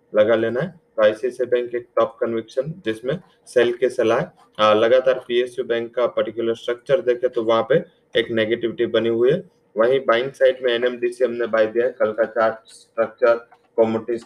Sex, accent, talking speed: male, Indian, 175 wpm